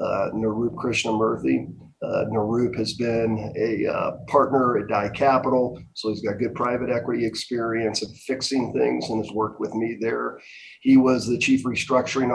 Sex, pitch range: male, 110-130 Hz